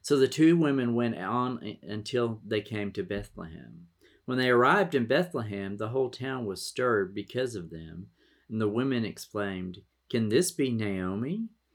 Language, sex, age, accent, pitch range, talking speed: English, male, 50-69, American, 90-120 Hz, 165 wpm